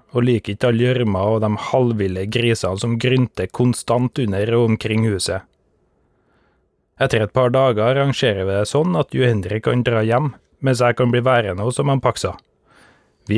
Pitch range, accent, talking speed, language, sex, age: 105-130 Hz, native, 180 wpm, Swedish, male, 30-49